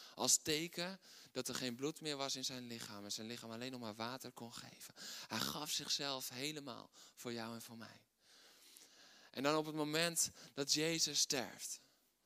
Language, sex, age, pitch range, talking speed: Dutch, male, 20-39, 125-155 Hz, 180 wpm